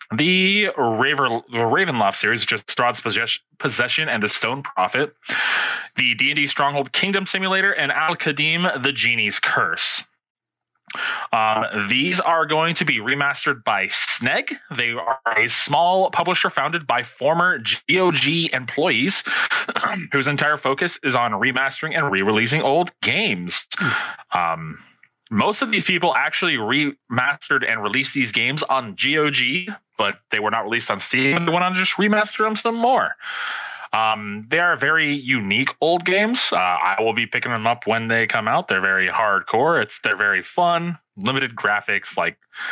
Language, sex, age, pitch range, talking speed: English, male, 30-49, 120-180 Hz, 150 wpm